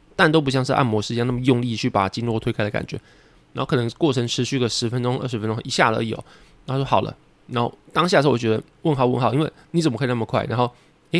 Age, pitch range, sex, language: 20-39, 115-150 Hz, male, Chinese